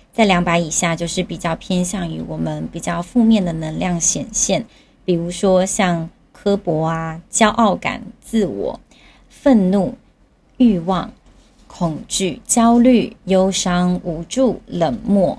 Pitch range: 175-220 Hz